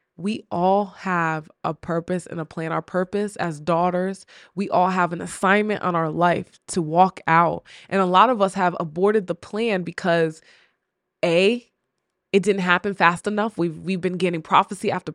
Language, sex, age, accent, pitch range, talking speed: English, female, 20-39, American, 170-200 Hz, 180 wpm